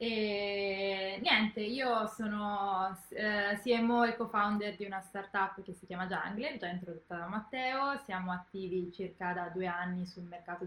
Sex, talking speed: female, 145 wpm